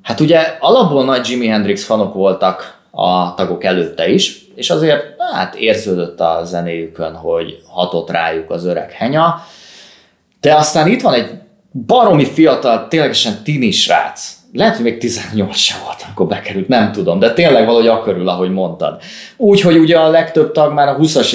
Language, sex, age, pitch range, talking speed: Hungarian, male, 20-39, 100-155 Hz, 160 wpm